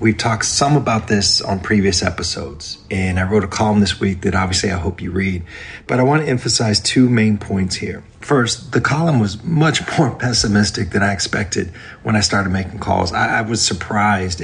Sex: male